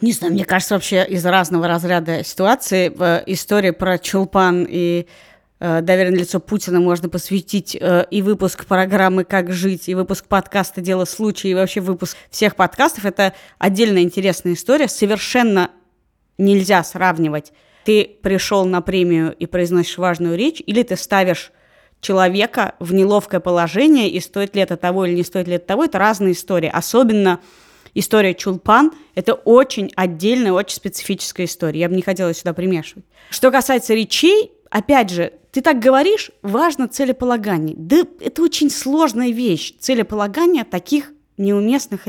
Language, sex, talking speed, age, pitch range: Russian, female, 150 wpm, 20-39, 175-215 Hz